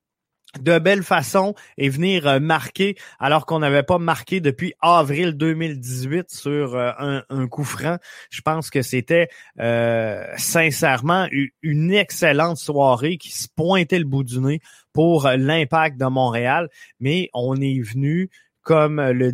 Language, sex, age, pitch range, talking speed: French, male, 20-39, 125-160 Hz, 140 wpm